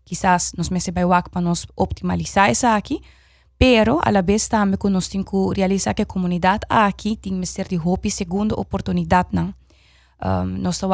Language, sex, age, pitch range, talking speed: English, female, 20-39, 180-200 Hz, 120 wpm